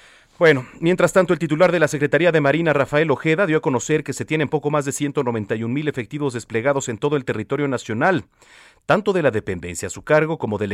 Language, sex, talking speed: Spanish, male, 220 wpm